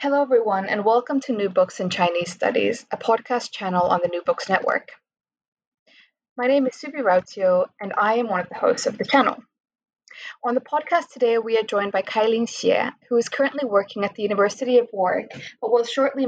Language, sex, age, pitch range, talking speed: English, female, 20-39, 190-250 Hz, 205 wpm